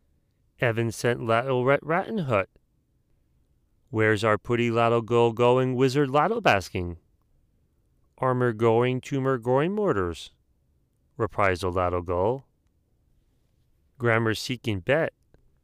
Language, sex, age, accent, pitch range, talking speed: English, male, 30-49, American, 90-130 Hz, 90 wpm